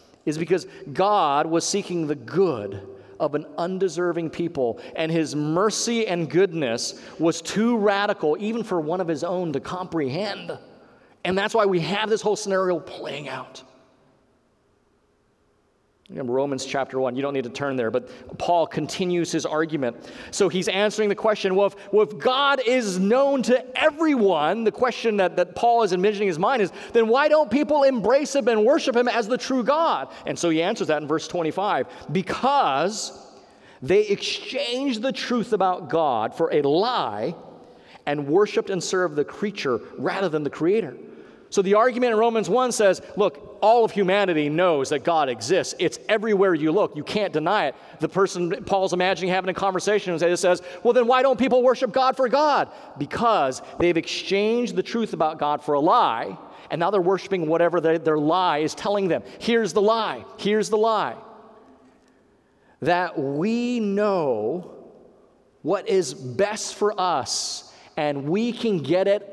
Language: English